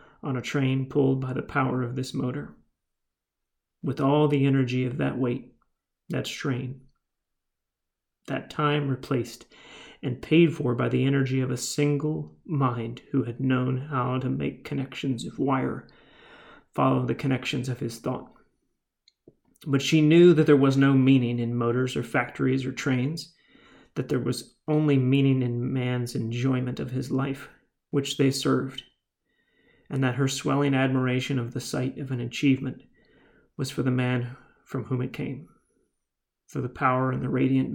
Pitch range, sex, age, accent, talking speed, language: 125-140 Hz, male, 30-49, American, 160 wpm, English